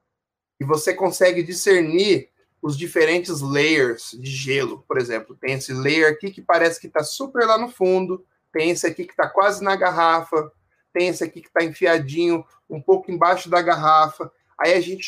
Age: 20-39